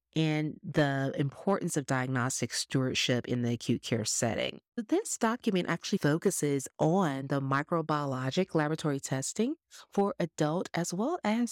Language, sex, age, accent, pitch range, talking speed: English, female, 30-49, American, 140-185 Hz, 130 wpm